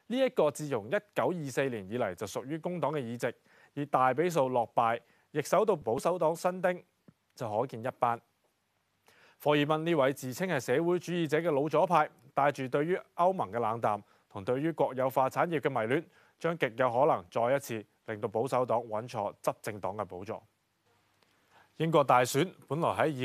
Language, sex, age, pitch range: Chinese, male, 20-39, 115-165 Hz